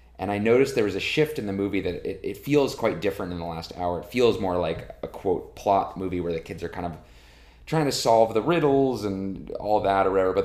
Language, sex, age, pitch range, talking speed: English, male, 30-49, 85-115 Hz, 260 wpm